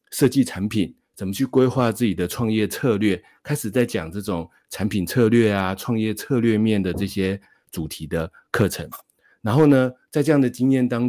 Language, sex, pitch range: Chinese, male, 95-120 Hz